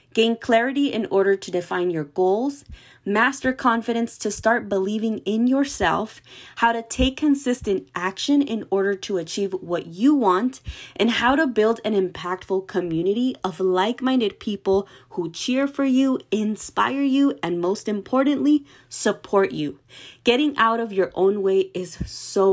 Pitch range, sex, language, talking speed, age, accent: 180-230 Hz, female, English, 150 wpm, 20-39, American